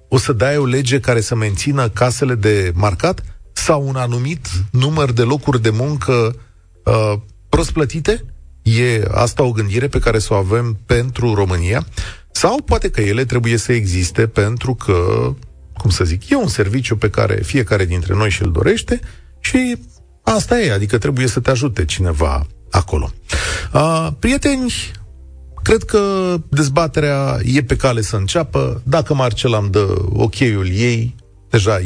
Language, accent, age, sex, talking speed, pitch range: Romanian, native, 30-49, male, 155 wpm, 95-135 Hz